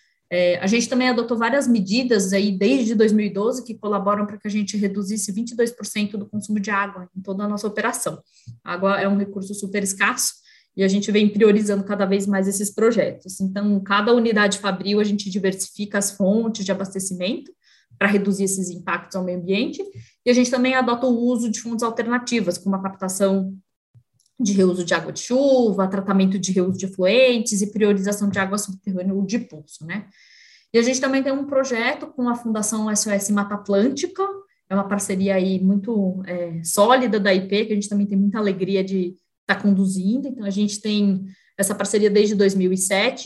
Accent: Brazilian